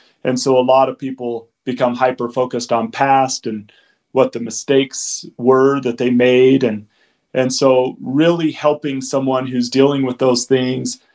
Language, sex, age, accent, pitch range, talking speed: English, male, 40-59, American, 130-145 Hz, 155 wpm